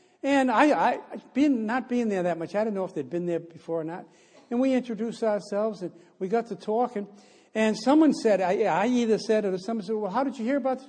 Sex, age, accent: male, 60-79, American